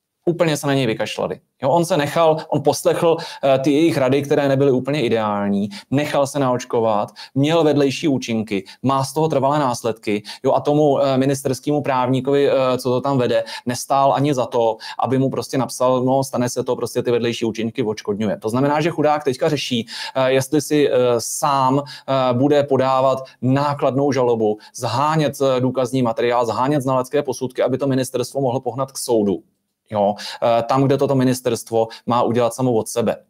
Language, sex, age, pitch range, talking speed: Czech, male, 30-49, 120-145 Hz, 175 wpm